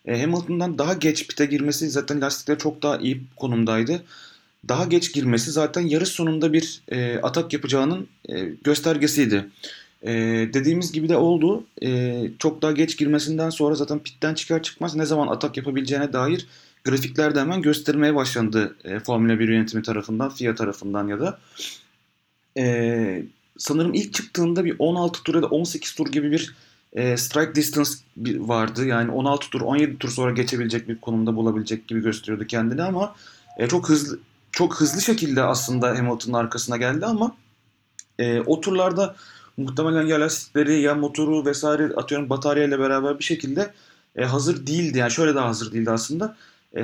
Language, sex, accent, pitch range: Turkish, male, native, 120-155 Hz